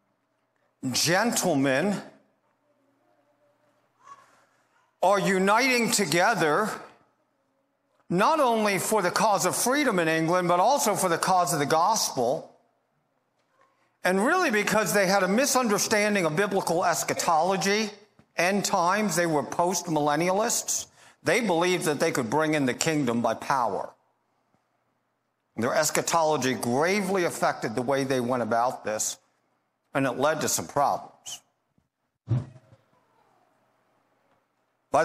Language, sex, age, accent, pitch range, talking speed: English, male, 50-69, American, 140-205 Hz, 110 wpm